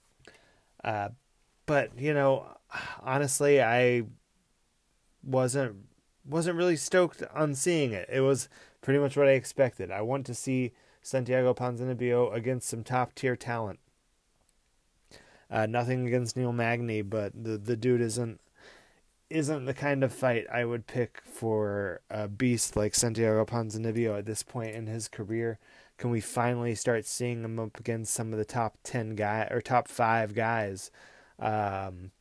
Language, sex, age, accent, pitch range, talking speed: English, male, 20-39, American, 110-130 Hz, 150 wpm